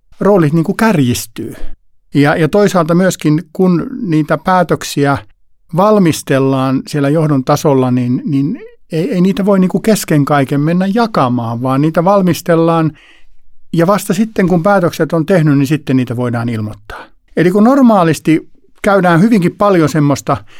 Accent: native